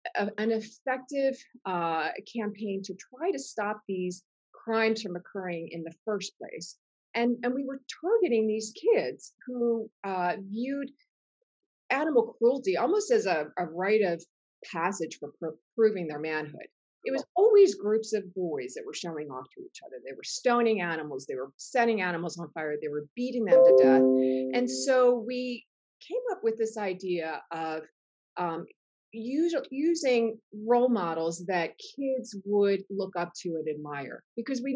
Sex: female